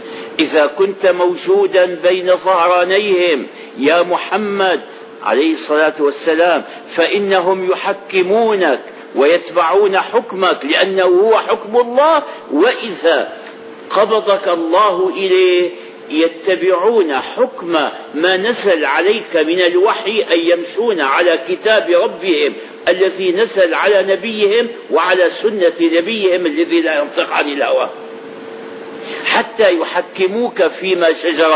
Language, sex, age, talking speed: Arabic, male, 50-69, 95 wpm